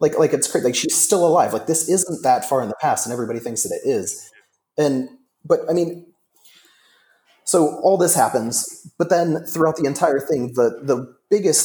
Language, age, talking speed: English, 30-49, 200 wpm